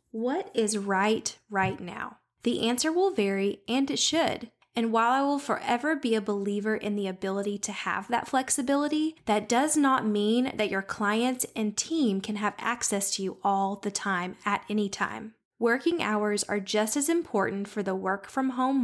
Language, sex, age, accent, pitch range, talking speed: English, female, 10-29, American, 195-250 Hz, 180 wpm